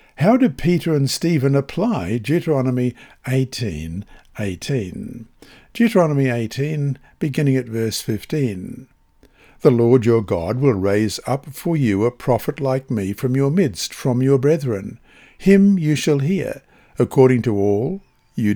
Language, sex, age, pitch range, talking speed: English, male, 60-79, 115-150 Hz, 135 wpm